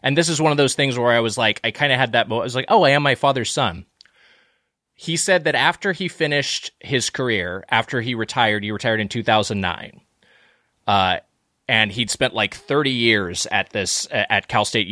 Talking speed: 220 wpm